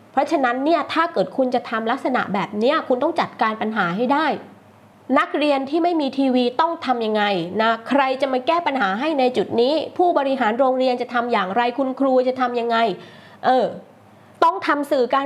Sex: female